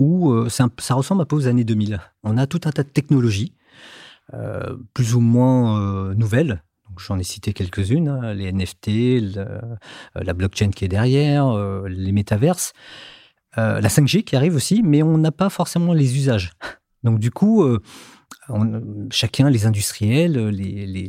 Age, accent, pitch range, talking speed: 40-59, French, 110-140 Hz, 180 wpm